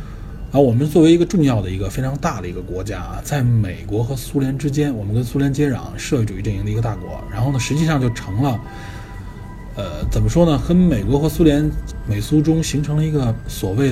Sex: male